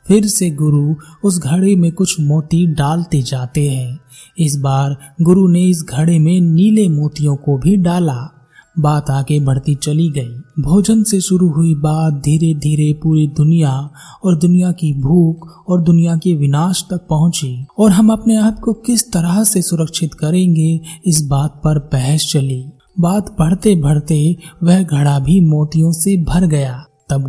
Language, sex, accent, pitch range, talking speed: Hindi, male, native, 145-180 Hz, 160 wpm